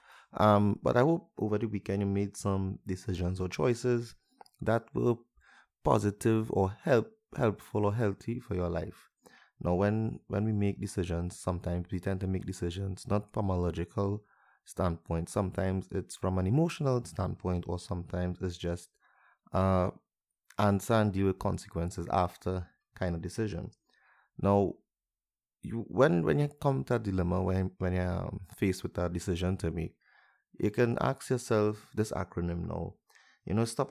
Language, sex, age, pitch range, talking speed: English, male, 30-49, 90-110 Hz, 160 wpm